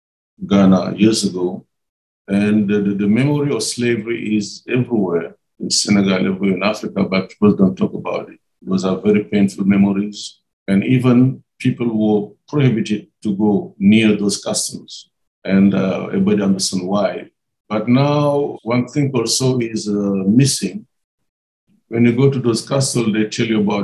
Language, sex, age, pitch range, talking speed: English, male, 60-79, 100-115 Hz, 150 wpm